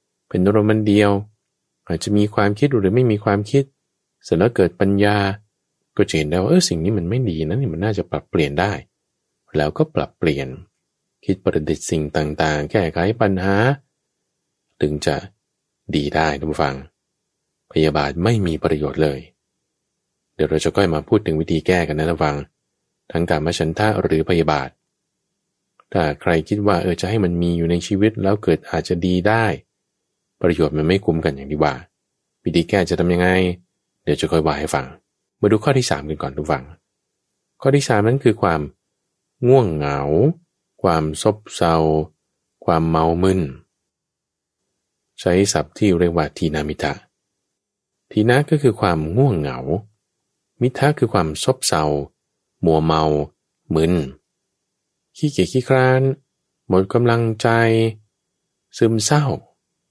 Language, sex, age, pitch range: English, male, 20-39, 80-110 Hz